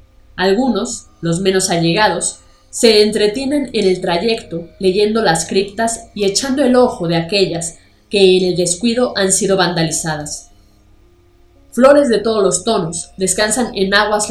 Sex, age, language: female, 20-39, Spanish